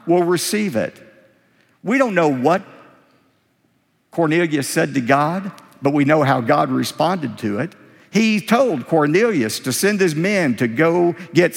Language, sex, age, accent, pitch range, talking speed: English, male, 50-69, American, 140-195 Hz, 150 wpm